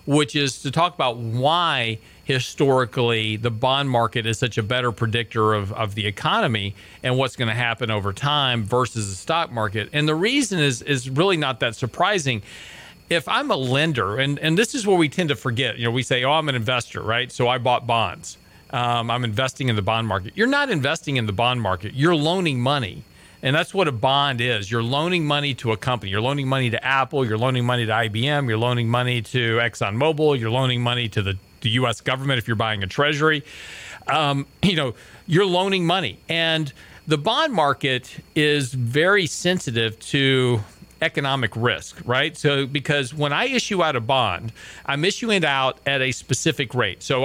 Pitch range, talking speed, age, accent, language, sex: 120-155 Hz, 200 wpm, 40-59, American, English, male